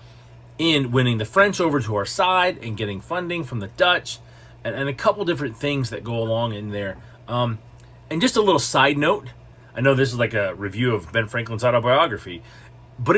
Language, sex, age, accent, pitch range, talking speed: English, male, 40-59, American, 115-135 Hz, 200 wpm